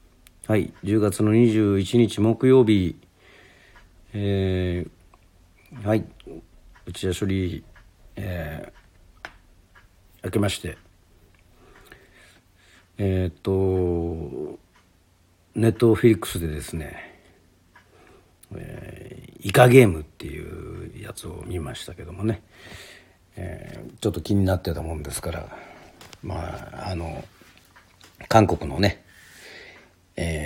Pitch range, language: 85-100 Hz, Japanese